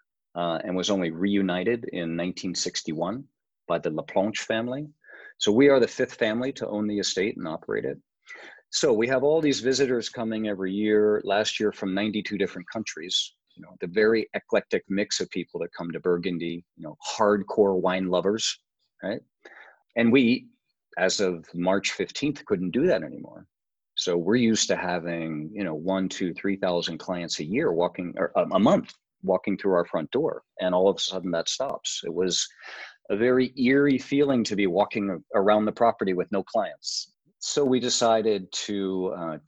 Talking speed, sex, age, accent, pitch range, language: 180 wpm, male, 40-59, American, 85-115 Hz, English